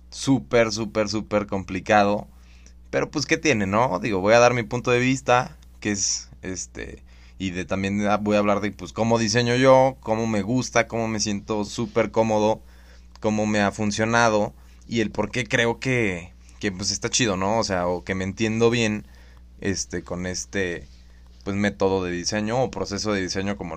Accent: Mexican